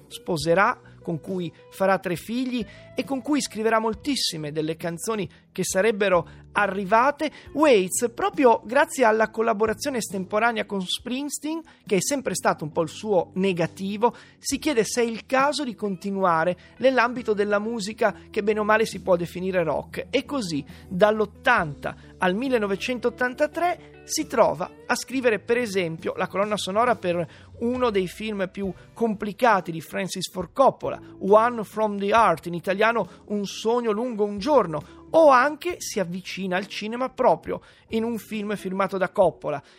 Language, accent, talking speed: Italian, native, 150 wpm